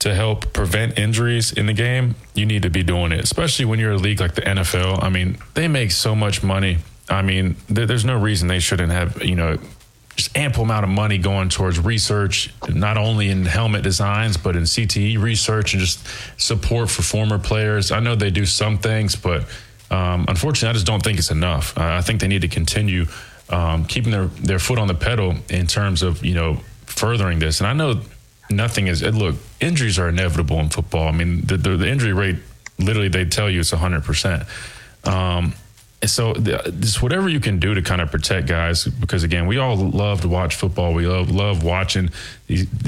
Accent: American